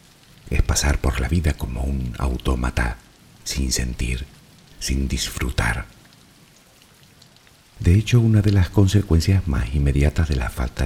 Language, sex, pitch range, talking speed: Spanish, male, 65-90 Hz, 125 wpm